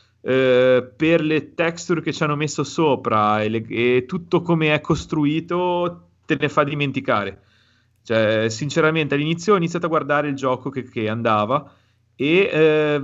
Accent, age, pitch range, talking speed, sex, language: native, 30-49, 120-150 Hz, 155 wpm, male, Italian